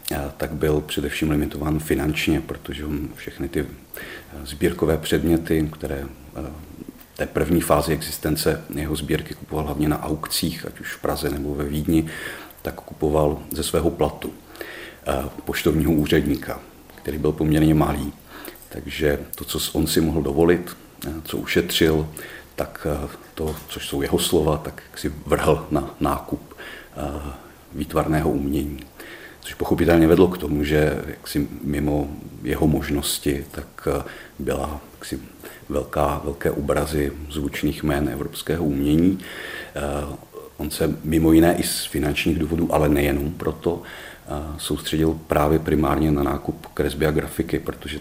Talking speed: 120 wpm